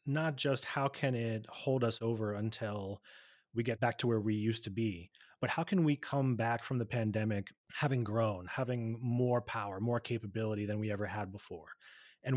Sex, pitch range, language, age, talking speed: male, 105-125 Hz, English, 30-49, 195 wpm